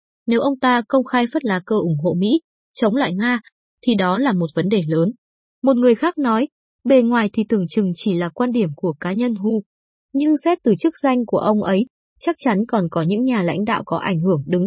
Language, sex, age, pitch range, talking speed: Vietnamese, female, 20-39, 190-255 Hz, 235 wpm